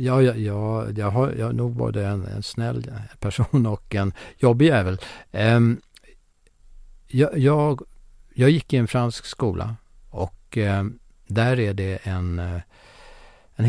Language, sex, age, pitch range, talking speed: Swedish, male, 60-79, 95-125 Hz, 140 wpm